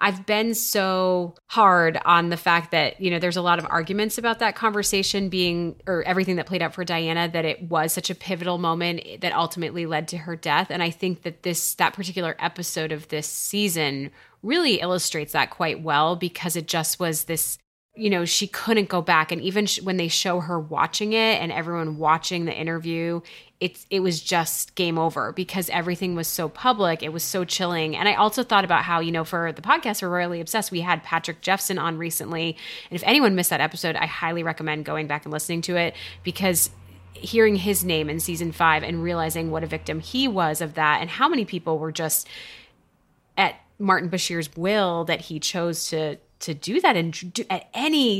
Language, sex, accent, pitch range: English, female, American, 165-190 Hz